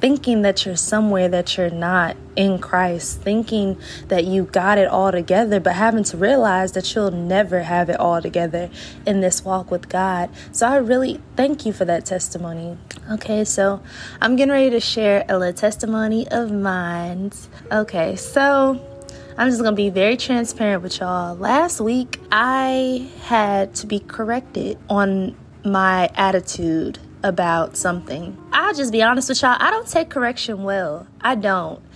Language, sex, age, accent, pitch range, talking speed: English, female, 20-39, American, 195-265 Hz, 165 wpm